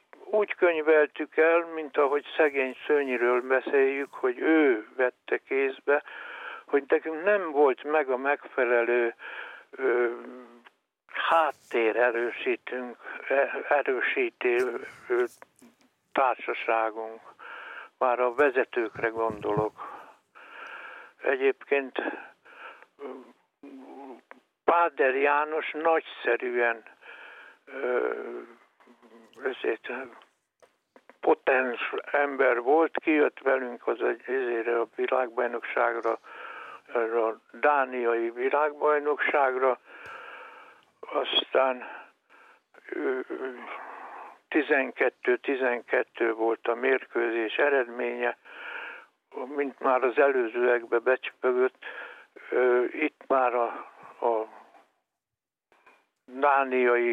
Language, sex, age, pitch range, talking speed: Hungarian, male, 60-79, 120-160 Hz, 65 wpm